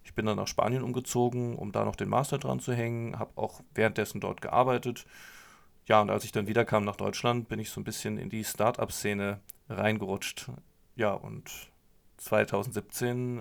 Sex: male